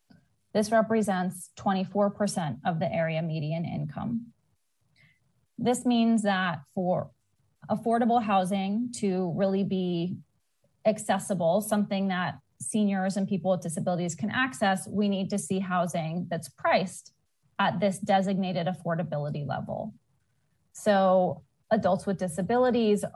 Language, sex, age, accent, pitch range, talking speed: English, female, 30-49, American, 180-205 Hz, 110 wpm